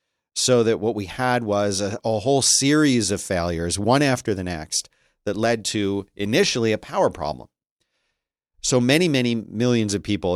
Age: 40-59